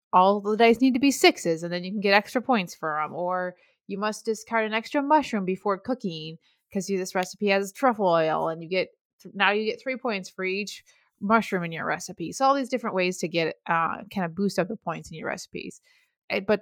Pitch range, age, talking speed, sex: 180-220 Hz, 20-39, 230 wpm, female